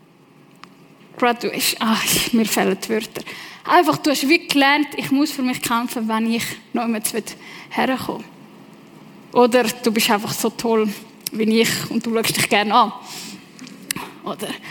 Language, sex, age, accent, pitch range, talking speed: German, female, 10-29, Swiss, 220-265 Hz, 150 wpm